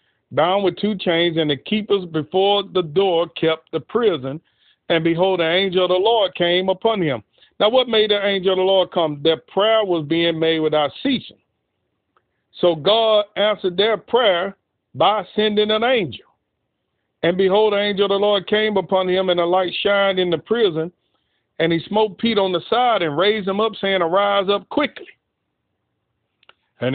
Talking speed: 180 wpm